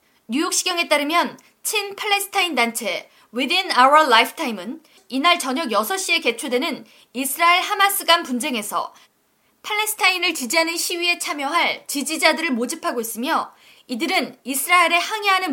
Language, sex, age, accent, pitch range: Korean, female, 20-39, native, 255-365 Hz